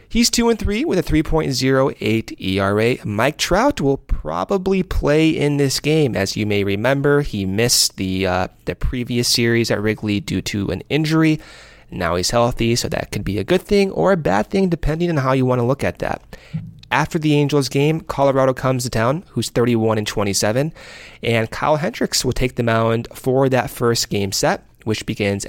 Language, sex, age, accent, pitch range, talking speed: English, male, 30-49, American, 105-145 Hz, 185 wpm